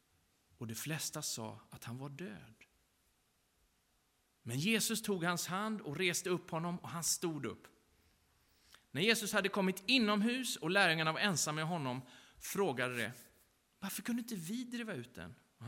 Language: Swedish